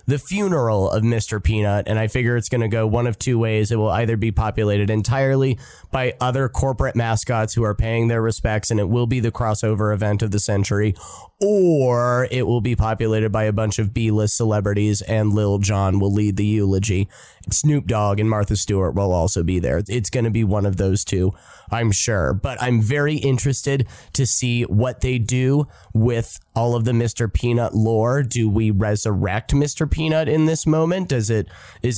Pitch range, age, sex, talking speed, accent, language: 105-125 Hz, 30-49, male, 195 wpm, American, English